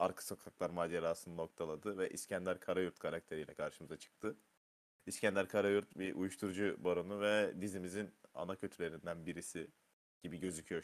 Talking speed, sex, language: 120 wpm, male, Turkish